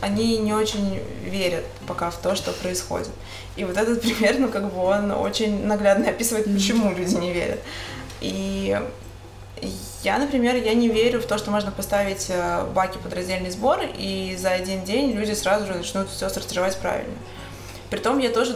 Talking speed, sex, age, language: 170 wpm, female, 20-39, Russian